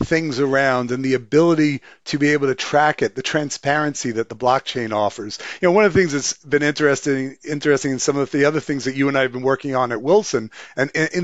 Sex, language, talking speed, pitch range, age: male, English, 245 wpm, 130-155 Hz, 40-59